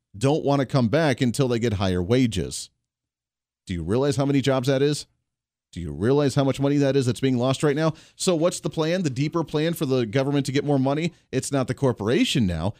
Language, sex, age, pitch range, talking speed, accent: English, male, 40-59, 115-150 Hz, 235 wpm, American